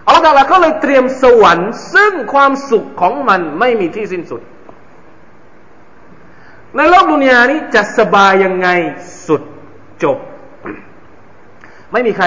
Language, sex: Thai, male